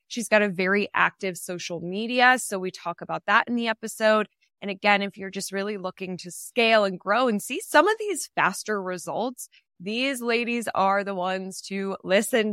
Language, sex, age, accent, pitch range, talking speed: English, female, 20-39, American, 180-220 Hz, 190 wpm